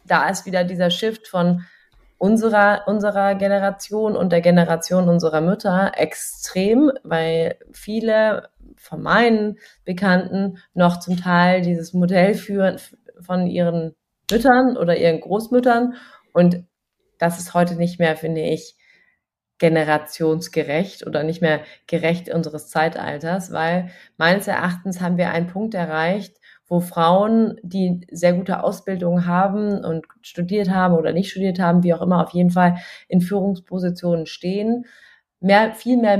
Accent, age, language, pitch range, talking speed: German, 30-49, German, 165-195 Hz, 135 wpm